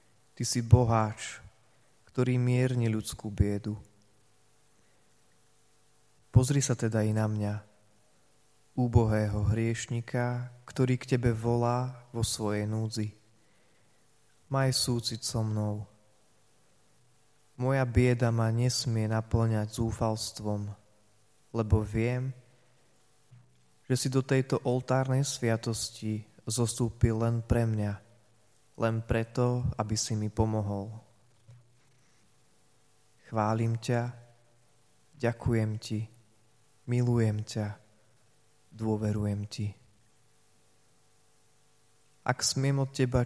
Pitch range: 110-125 Hz